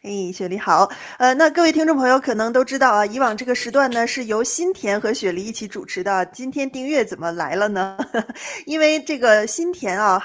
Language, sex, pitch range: Chinese, female, 195-265 Hz